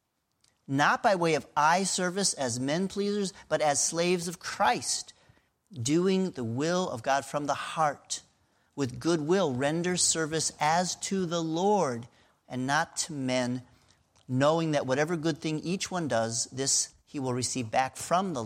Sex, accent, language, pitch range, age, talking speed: male, American, English, 120-150 Hz, 40-59, 160 wpm